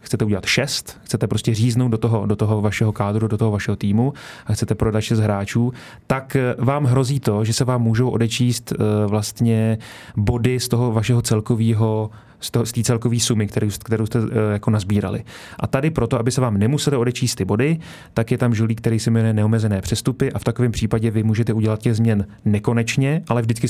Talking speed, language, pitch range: 200 wpm, Czech, 110-120 Hz